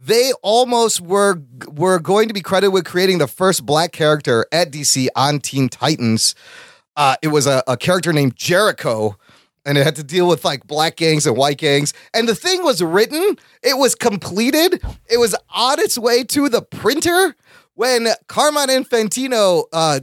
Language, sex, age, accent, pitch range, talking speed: English, male, 30-49, American, 150-235 Hz, 175 wpm